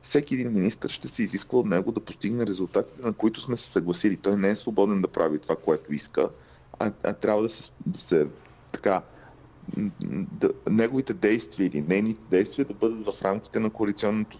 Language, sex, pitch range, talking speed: Bulgarian, male, 100-125 Hz, 190 wpm